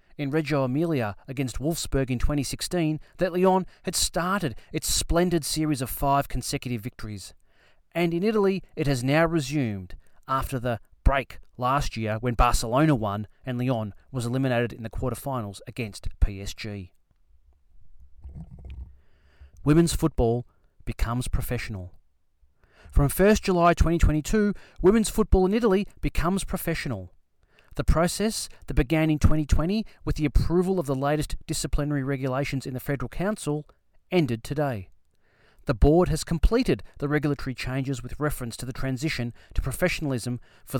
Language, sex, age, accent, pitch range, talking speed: Italian, male, 30-49, Australian, 105-155 Hz, 135 wpm